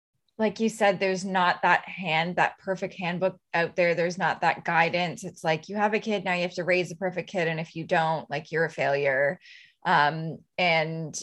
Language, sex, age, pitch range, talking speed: English, female, 20-39, 175-205 Hz, 215 wpm